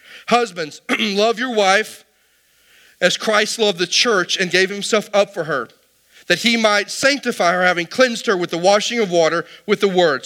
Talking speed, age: 180 wpm, 40-59